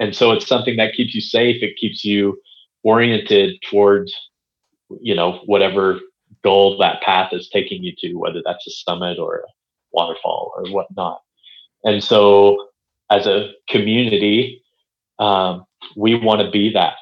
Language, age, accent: English, 30-49, American